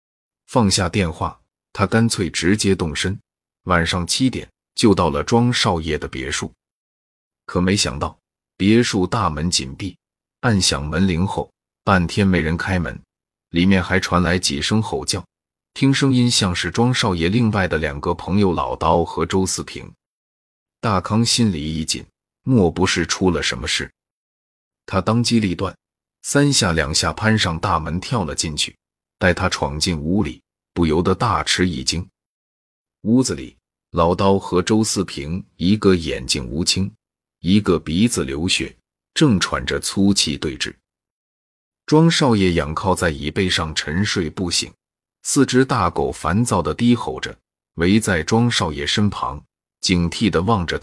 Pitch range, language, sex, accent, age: 85-110 Hz, Chinese, male, native, 30-49